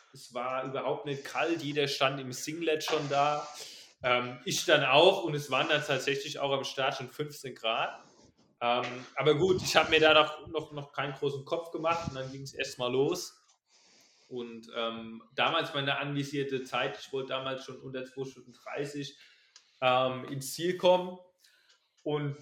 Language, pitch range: German, 130-145 Hz